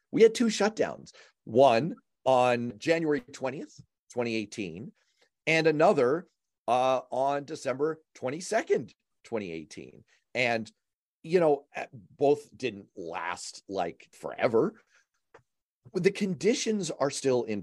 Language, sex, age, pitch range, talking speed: English, male, 40-59, 115-160 Hz, 110 wpm